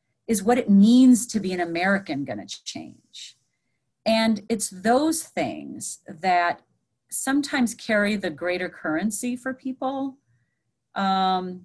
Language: English